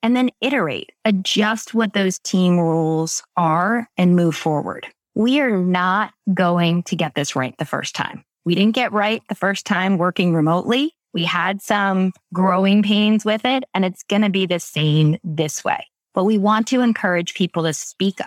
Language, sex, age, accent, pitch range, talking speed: English, female, 20-39, American, 175-225 Hz, 180 wpm